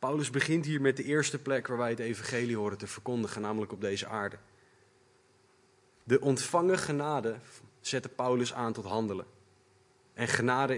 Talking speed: 155 wpm